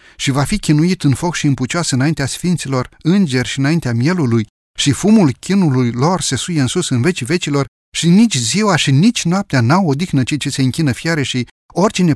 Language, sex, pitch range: Romanian, male, 135-195 Hz